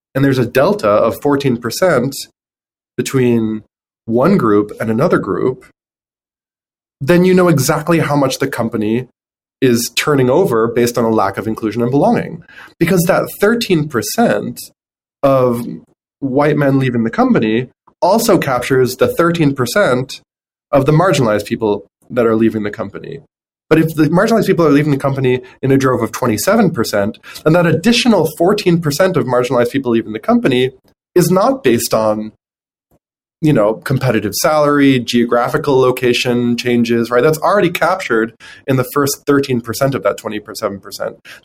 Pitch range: 120-180 Hz